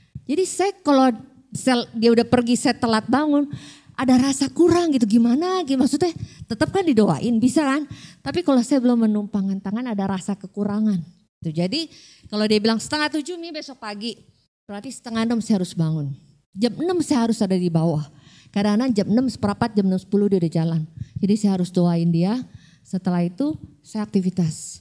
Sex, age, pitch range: female, 20-39, 190-260 Hz